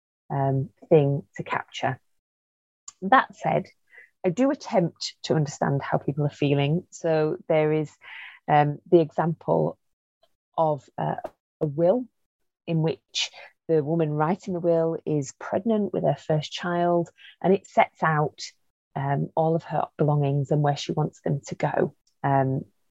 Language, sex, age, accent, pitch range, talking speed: English, female, 30-49, British, 145-180 Hz, 145 wpm